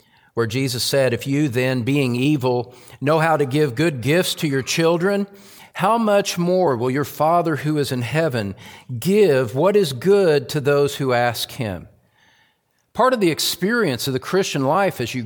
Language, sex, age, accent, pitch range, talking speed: English, male, 50-69, American, 135-185 Hz, 180 wpm